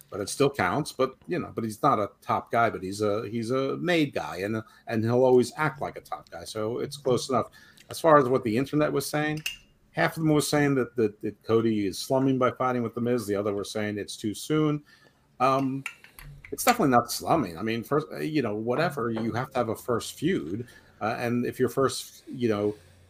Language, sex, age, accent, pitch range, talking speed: English, male, 50-69, American, 110-130 Hz, 230 wpm